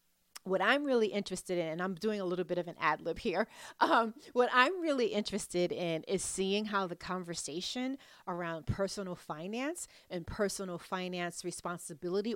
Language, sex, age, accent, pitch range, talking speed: English, female, 40-59, American, 180-245 Hz, 165 wpm